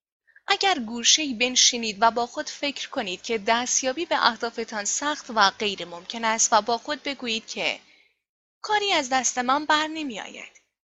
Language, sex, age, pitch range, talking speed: Persian, female, 10-29, 220-285 Hz, 155 wpm